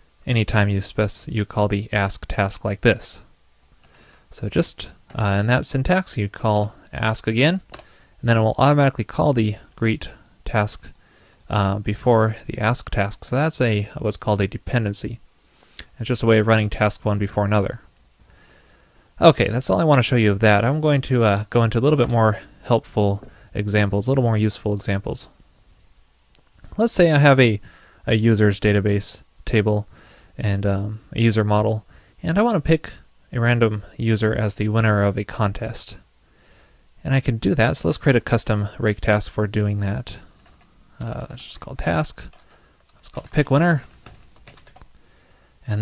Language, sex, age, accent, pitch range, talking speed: English, male, 20-39, American, 100-120 Hz, 175 wpm